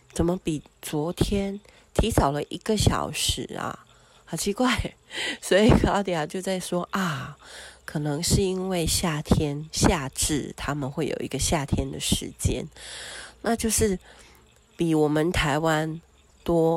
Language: Chinese